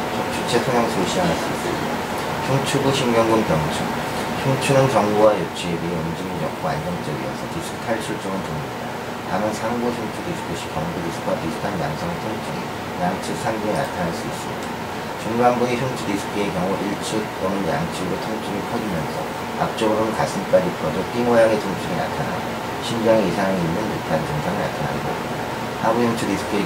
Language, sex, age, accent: Korean, male, 40-59, native